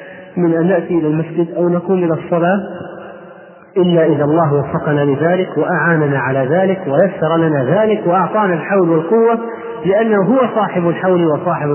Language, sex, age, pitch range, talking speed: Arabic, male, 40-59, 150-180 Hz, 145 wpm